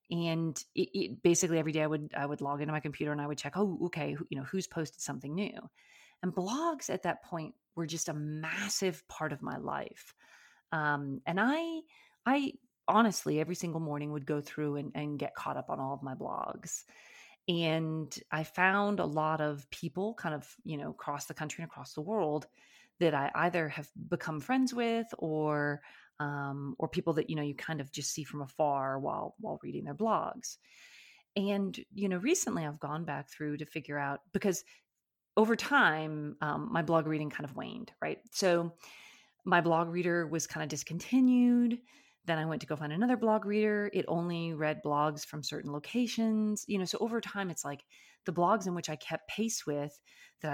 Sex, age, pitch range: female, 30-49, 150-195 Hz